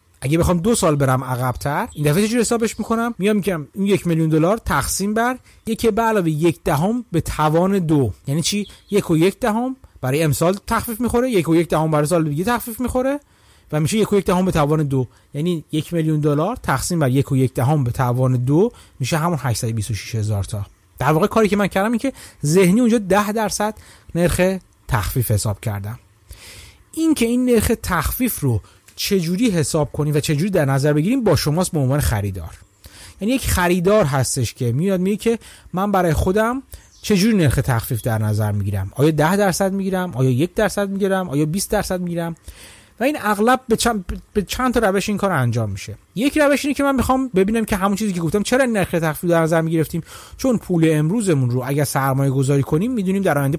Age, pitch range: 30-49, 135-210 Hz